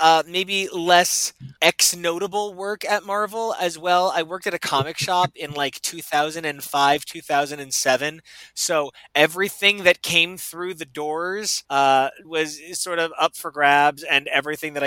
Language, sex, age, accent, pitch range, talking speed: English, male, 20-39, American, 140-185 Hz, 150 wpm